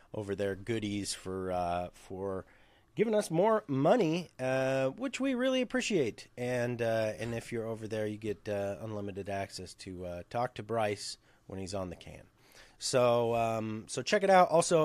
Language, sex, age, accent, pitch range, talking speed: English, male, 30-49, American, 110-160 Hz, 180 wpm